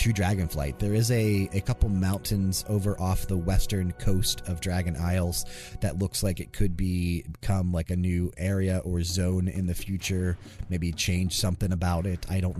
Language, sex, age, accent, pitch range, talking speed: English, male, 30-49, American, 85-105 Hz, 185 wpm